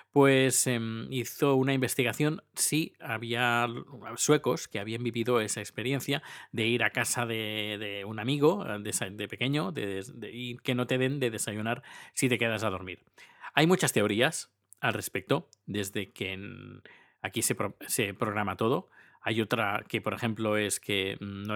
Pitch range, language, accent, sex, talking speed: 105-130 Hz, Spanish, Spanish, male, 155 wpm